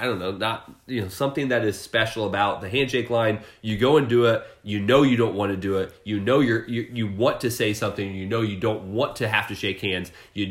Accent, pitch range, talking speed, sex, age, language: American, 105-130 Hz, 270 wpm, male, 30-49, English